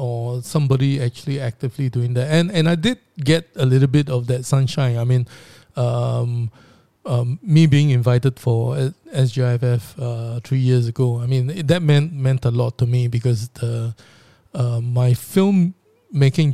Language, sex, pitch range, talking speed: English, male, 120-140 Hz, 170 wpm